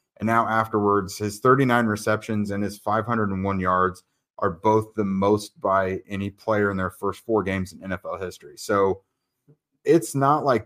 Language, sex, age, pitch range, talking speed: English, male, 30-49, 95-120 Hz, 165 wpm